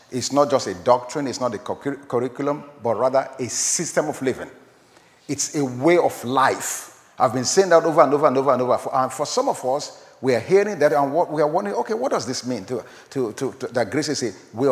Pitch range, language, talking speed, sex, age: 140-190 Hz, English, 240 wpm, male, 50-69